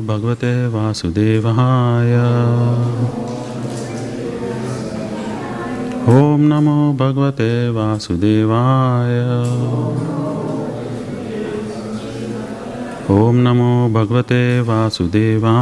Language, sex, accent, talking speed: English, male, Indian, 40 wpm